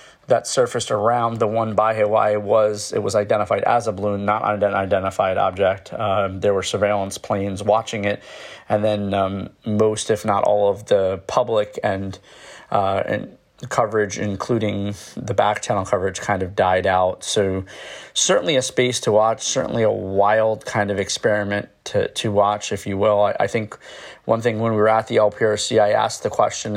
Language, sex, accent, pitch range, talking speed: English, male, American, 95-110 Hz, 180 wpm